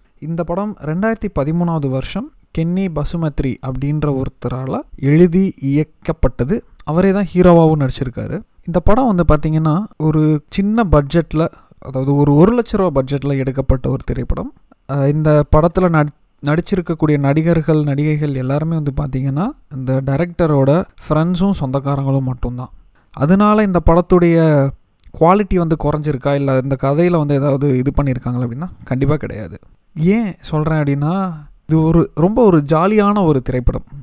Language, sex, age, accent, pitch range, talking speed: Tamil, male, 30-49, native, 135-180 Hz, 125 wpm